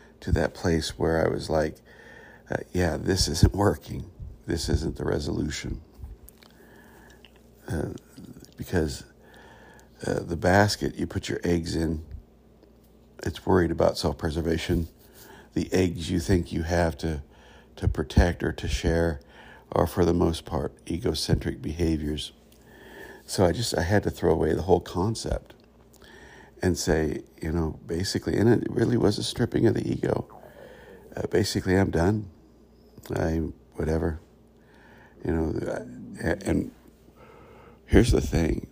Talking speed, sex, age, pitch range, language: 135 wpm, male, 60-79, 80-90 Hz, English